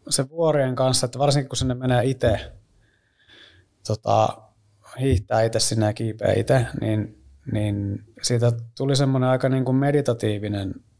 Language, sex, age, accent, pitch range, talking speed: Finnish, male, 30-49, native, 110-125 Hz, 130 wpm